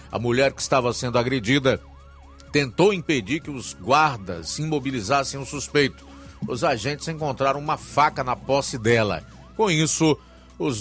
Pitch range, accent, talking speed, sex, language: 110-140 Hz, Brazilian, 145 wpm, male, Portuguese